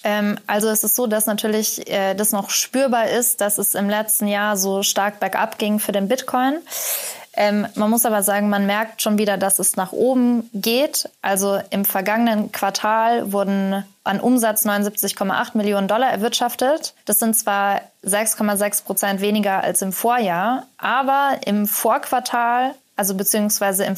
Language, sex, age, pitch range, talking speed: German, female, 20-39, 200-230 Hz, 155 wpm